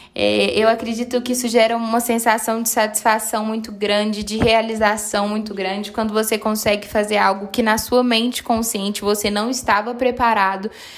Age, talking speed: 10-29, 165 wpm